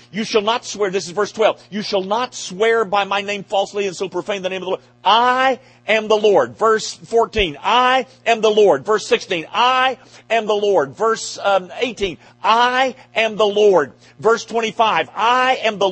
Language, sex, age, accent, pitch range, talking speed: English, male, 40-59, American, 130-220 Hz, 190 wpm